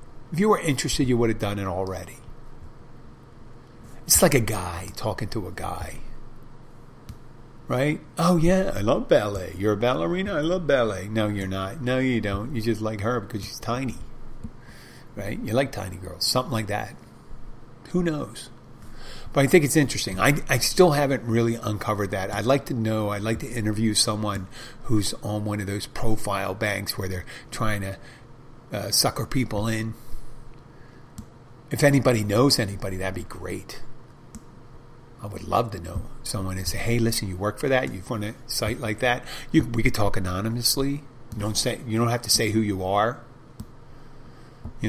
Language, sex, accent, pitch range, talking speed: English, male, American, 105-130 Hz, 180 wpm